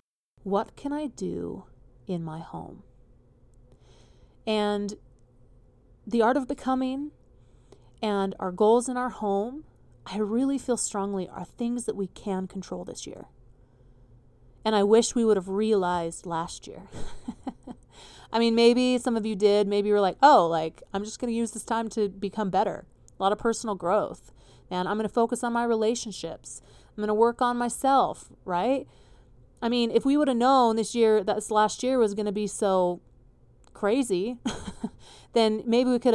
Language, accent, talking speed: English, American, 175 wpm